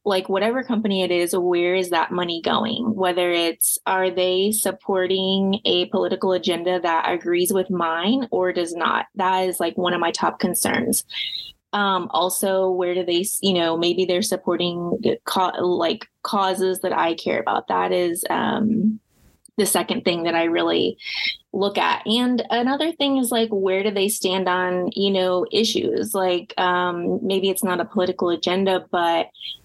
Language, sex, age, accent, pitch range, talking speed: English, female, 20-39, American, 175-200 Hz, 165 wpm